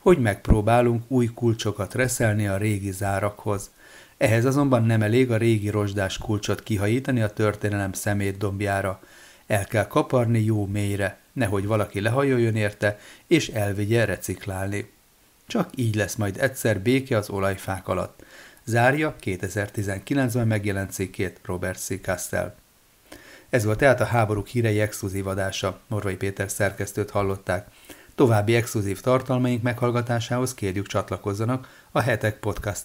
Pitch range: 100-115 Hz